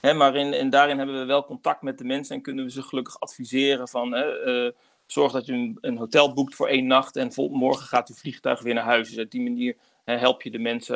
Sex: male